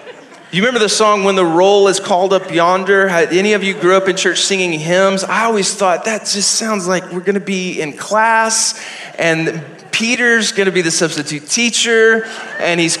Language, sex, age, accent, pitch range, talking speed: English, male, 30-49, American, 175-225 Hz, 200 wpm